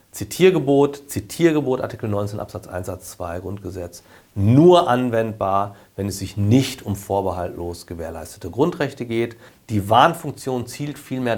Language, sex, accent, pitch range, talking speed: German, male, German, 95-125 Hz, 125 wpm